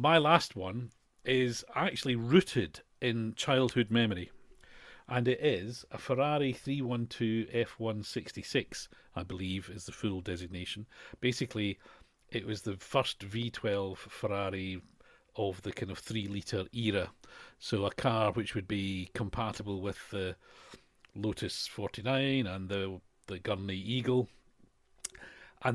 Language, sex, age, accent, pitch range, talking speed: English, male, 40-59, British, 100-120 Hz, 125 wpm